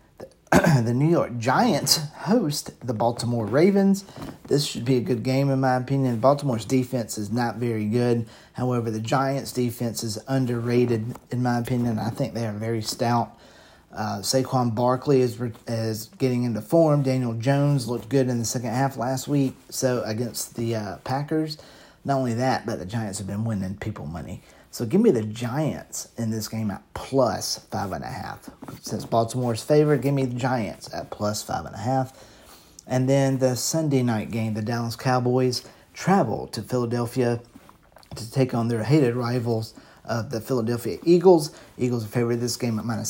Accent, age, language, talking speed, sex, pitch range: American, 40-59, English, 180 wpm, male, 115-130 Hz